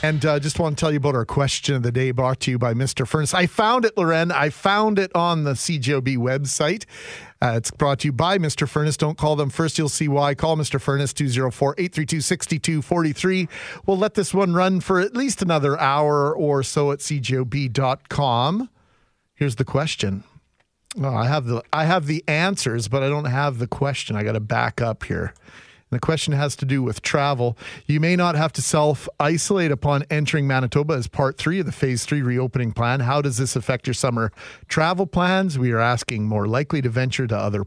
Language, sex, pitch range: English, male, 125-160 Hz